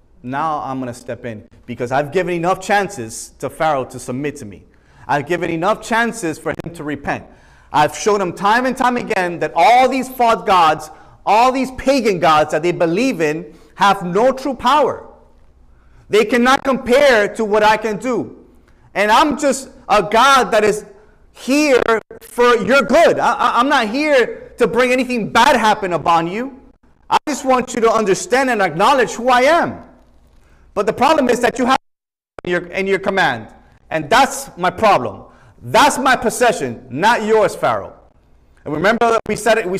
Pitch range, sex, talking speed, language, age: 175-265 Hz, male, 170 wpm, English, 30-49